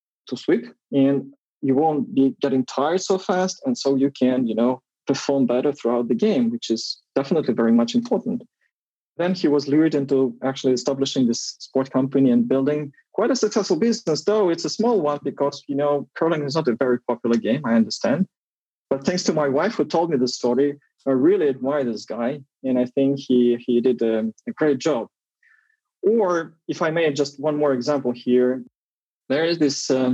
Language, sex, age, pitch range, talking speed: English, male, 20-39, 130-165 Hz, 195 wpm